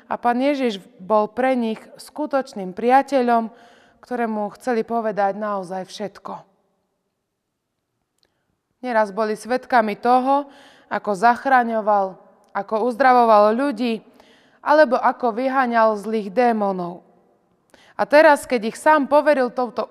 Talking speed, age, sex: 100 wpm, 20-39, female